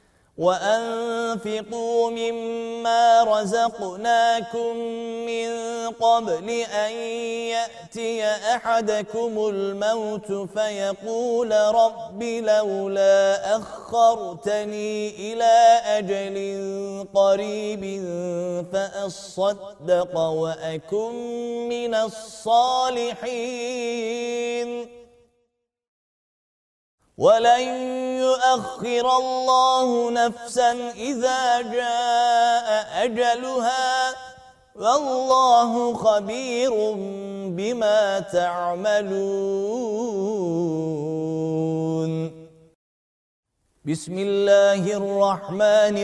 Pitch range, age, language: 195-235 Hz, 30-49, Turkish